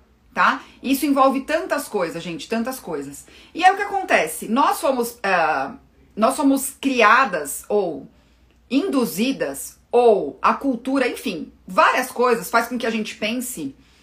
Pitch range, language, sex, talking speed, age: 210-270 Hz, Portuguese, female, 145 wpm, 30-49